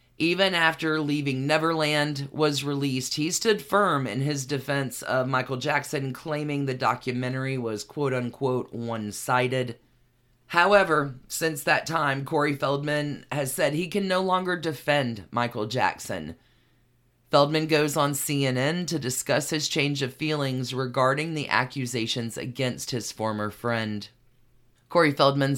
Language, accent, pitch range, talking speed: English, American, 125-150 Hz, 130 wpm